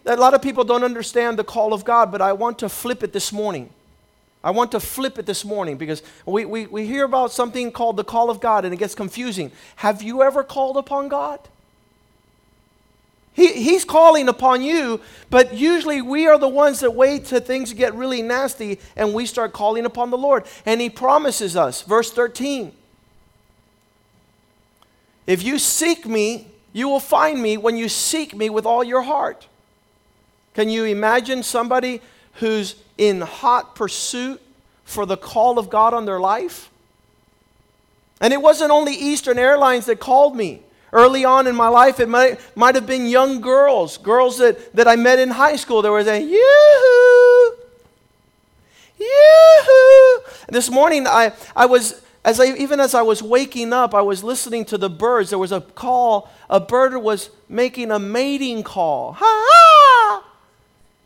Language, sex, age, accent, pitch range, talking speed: English, male, 40-59, American, 220-270 Hz, 165 wpm